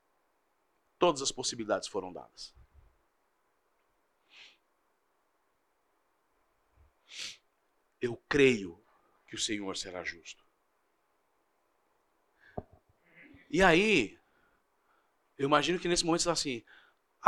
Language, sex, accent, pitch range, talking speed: Portuguese, male, Brazilian, 150-215 Hz, 75 wpm